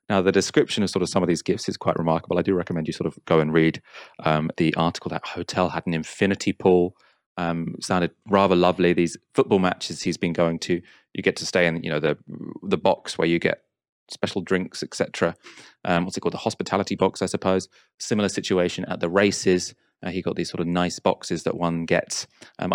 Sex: male